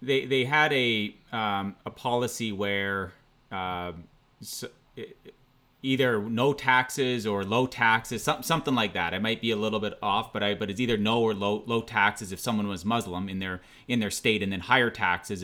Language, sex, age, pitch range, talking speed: English, male, 30-49, 105-130 Hz, 200 wpm